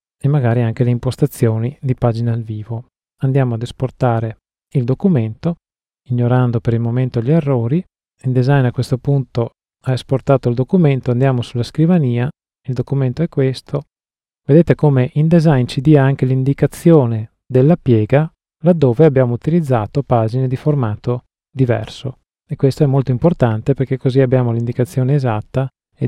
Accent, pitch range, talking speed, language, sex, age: native, 120-150 Hz, 145 wpm, Italian, male, 30-49